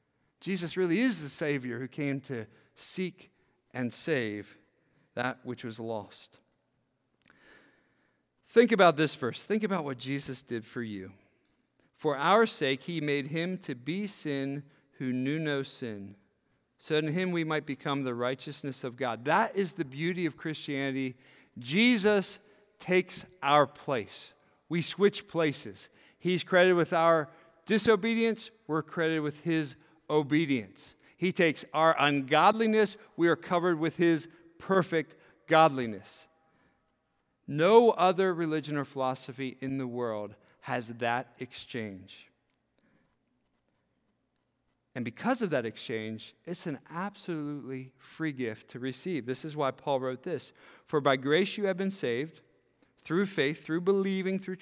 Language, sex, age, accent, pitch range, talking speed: English, male, 50-69, American, 130-180 Hz, 135 wpm